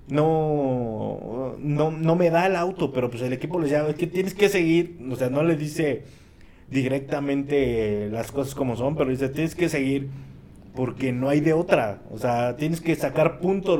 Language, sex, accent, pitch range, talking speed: Spanish, male, Mexican, 105-145 Hz, 190 wpm